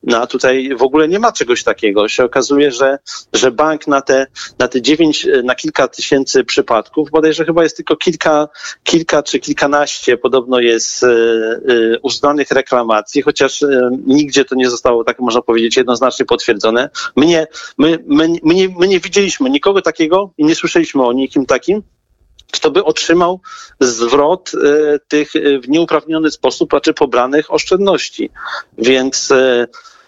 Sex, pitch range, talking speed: male, 115-160 Hz, 145 wpm